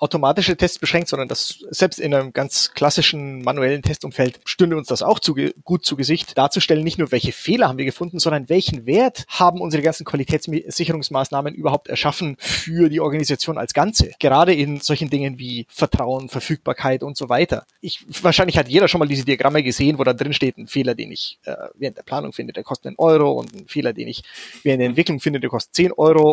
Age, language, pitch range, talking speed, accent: 30-49, German, 140-170 Hz, 210 wpm, German